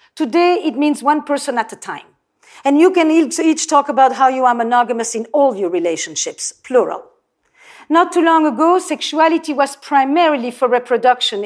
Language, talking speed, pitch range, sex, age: English, 175 wpm, 250-335 Hz, female, 50-69